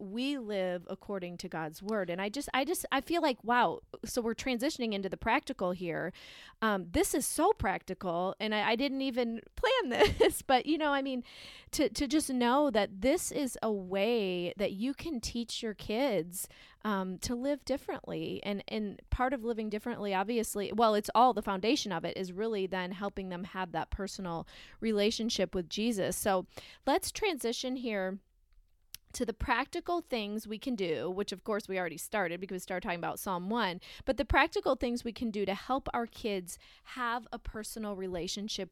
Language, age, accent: English, 30-49, American